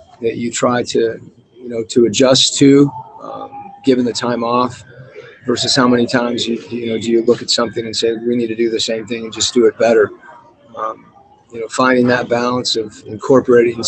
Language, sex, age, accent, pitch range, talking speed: English, male, 30-49, American, 115-125 Hz, 210 wpm